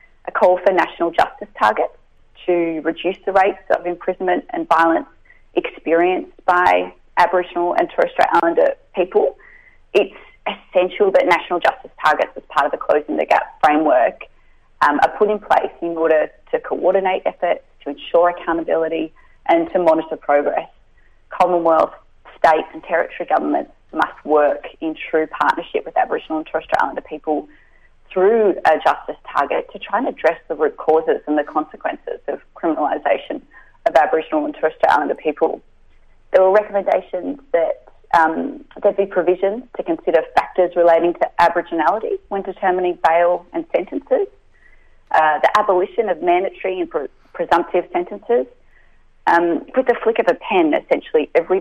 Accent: Australian